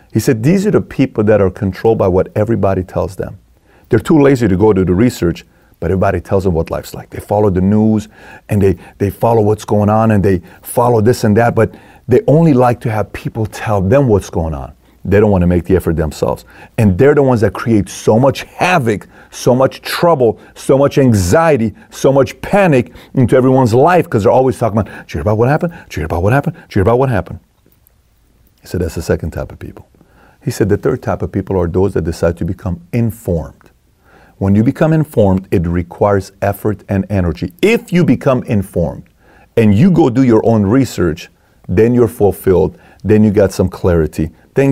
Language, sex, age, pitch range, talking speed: English, male, 40-59, 90-115 Hz, 215 wpm